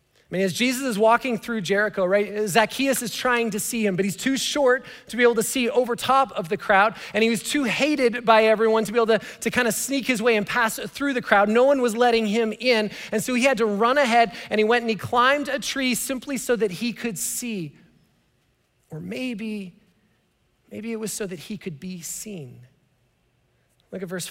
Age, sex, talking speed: 30-49, male, 225 wpm